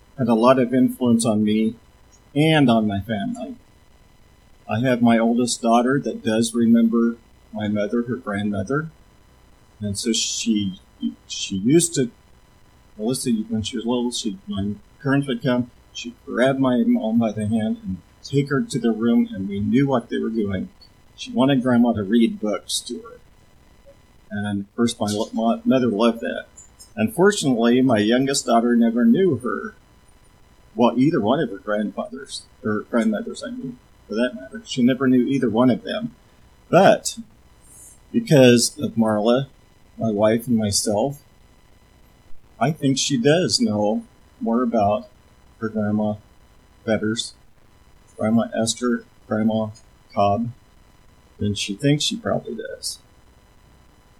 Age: 40-59